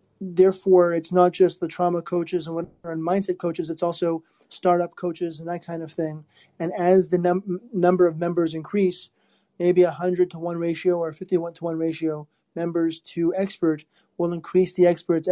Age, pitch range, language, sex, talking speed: 30-49, 165-185 Hz, English, male, 185 wpm